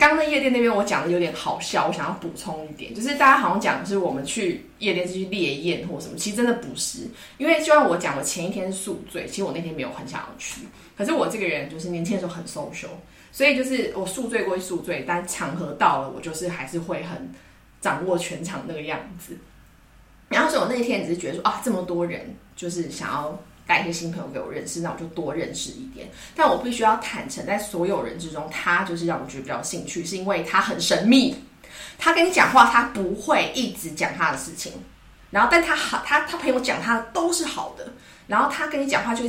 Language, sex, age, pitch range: English, female, 20-39, 175-260 Hz